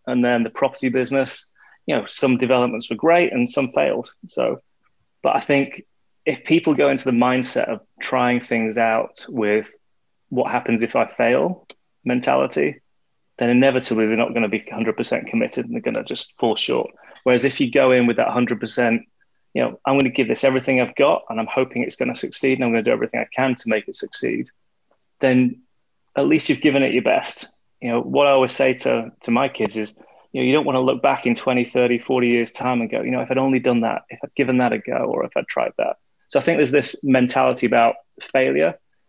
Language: English